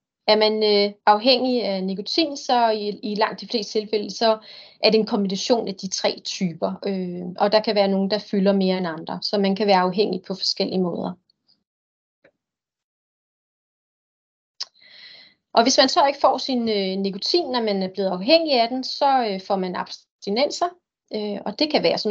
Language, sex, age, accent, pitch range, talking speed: Danish, female, 30-49, native, 195-235 Hz, 185 wpm